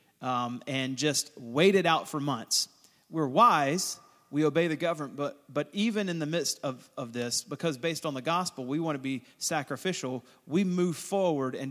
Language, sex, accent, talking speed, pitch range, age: English, male, American, 190 wpm, 130-165 Hz, 30-49